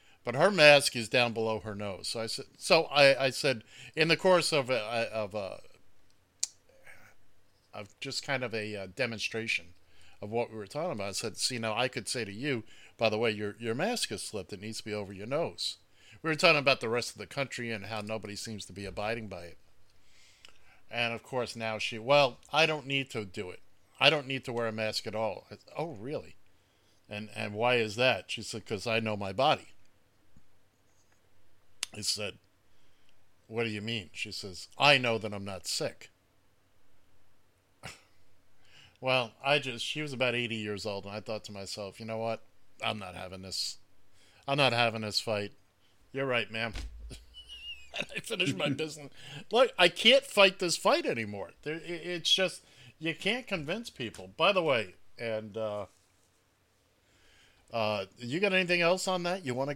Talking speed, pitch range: 190 wpm, 100-135 Hz